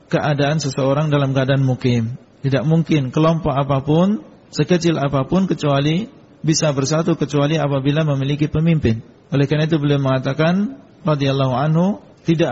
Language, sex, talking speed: Indonesian, male, 125 wpm